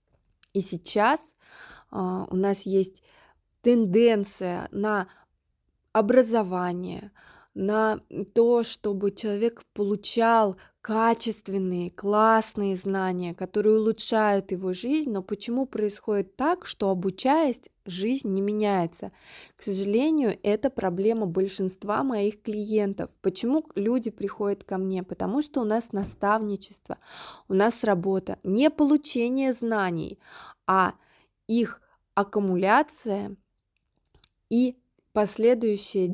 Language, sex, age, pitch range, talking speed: Russian, female, 20-39, 195-240 Hz, 95 wpm